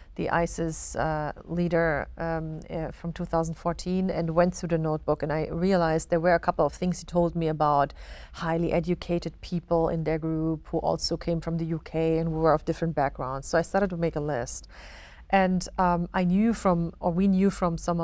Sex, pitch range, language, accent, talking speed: female, 160-180 Hz, English, German, 200 wpm